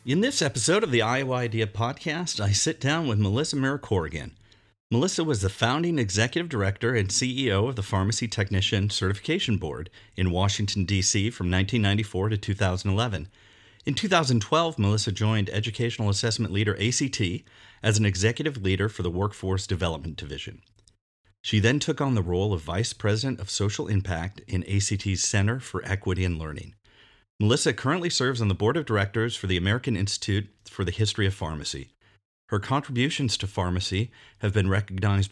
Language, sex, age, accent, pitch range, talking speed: English, male, 40-59, American, 95-115 Hz, 160 wpm